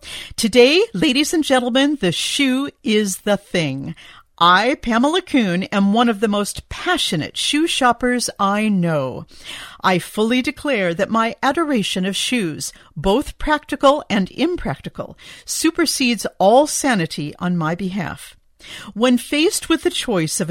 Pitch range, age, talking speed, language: 180-260 Hz, 50-69, 135 wpm, English